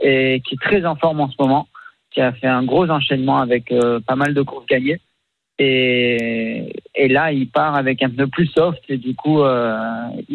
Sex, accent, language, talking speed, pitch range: male, French, French, 210 wpm, 135-165 Hz